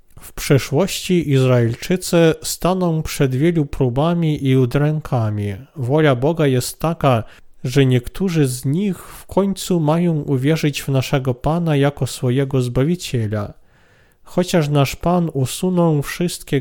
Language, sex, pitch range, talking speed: Polish, male, 130-170 Hz, 115 wpm